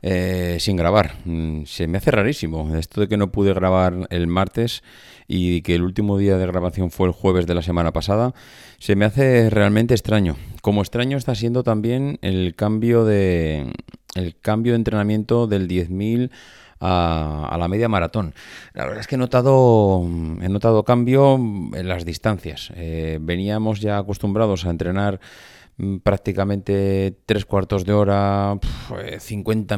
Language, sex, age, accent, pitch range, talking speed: Spanish, male, 30-49, Spanish, 90-110 Hz, 155 wpm